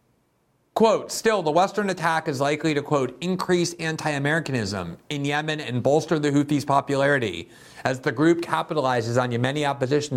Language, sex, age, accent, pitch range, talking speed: English, male, 50-69, American, 120-150 Hz, 150 wpm